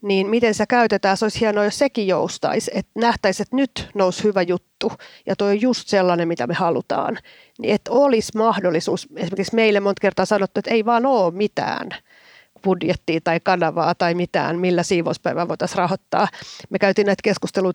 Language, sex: Finnish, female